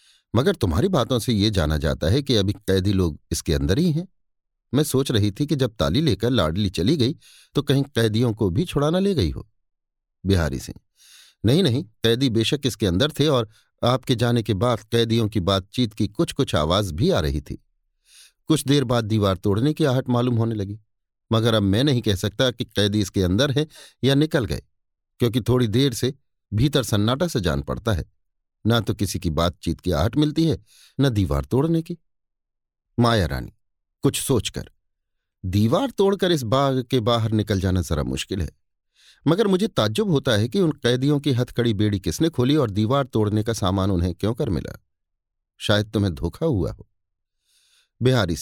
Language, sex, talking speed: Hindi, male, 185 wpm